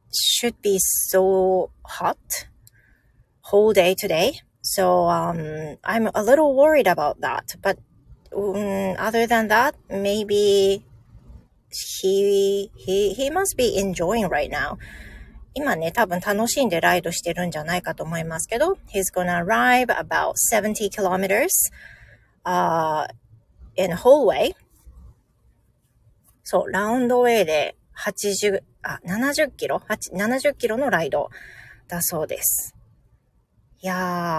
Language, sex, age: Japanese, female, 30-49